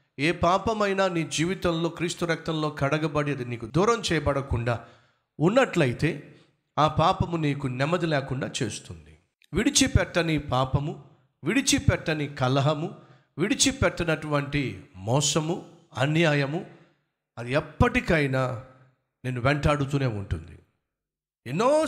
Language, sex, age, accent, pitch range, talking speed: Telugu, male, 50-69, native, 135-175 Hz, 85 wpm